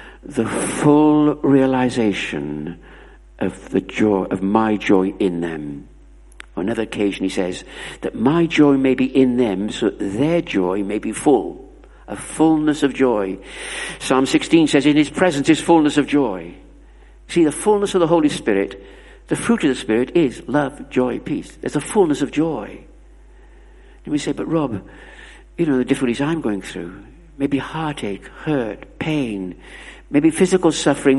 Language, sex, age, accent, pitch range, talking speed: English, male, 60-79, British, 110-165 Hz, 160 wpm